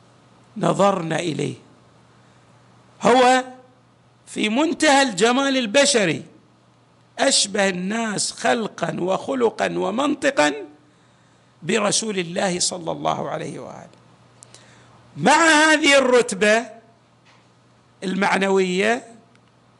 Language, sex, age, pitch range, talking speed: Arabic, male, 50-69, 190-255 Hz, 65 wpm